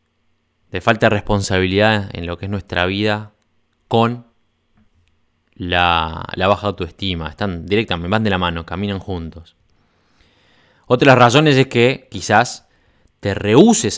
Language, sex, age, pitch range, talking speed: Spanish, male, 20-39, 85-115 Hz, 140 wpm